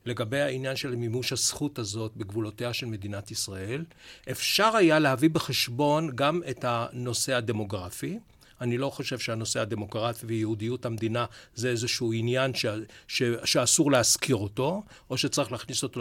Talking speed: 140 wpm